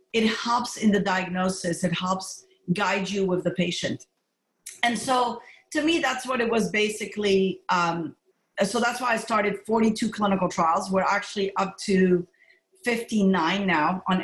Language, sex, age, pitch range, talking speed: English, female, 40-59, 195-240 Hz, 155 wpm